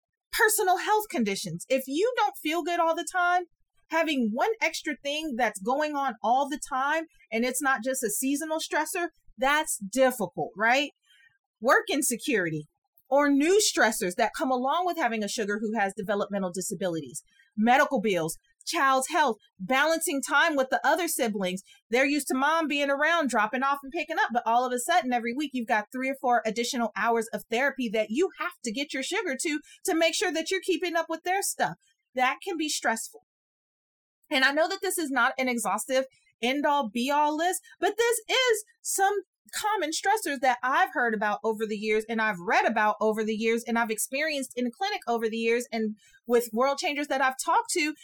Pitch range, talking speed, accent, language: 235-335 Hz, 195 wpm, American, English